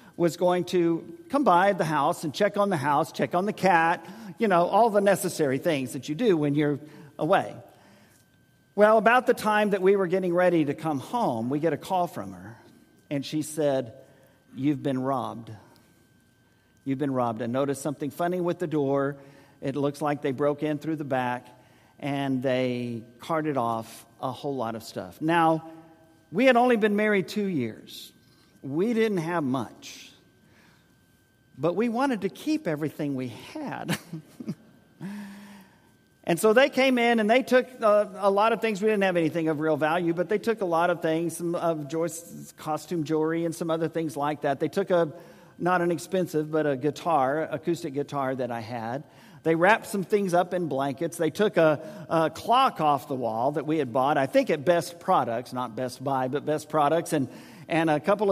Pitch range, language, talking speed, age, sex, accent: 140-190 Hz, English, 190 wpm, 50-69, male, American